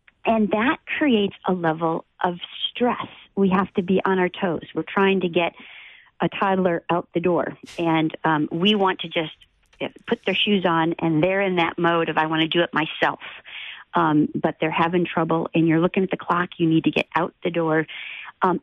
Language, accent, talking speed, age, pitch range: English, American, 205 wpm, 50-69, 165-195 Hz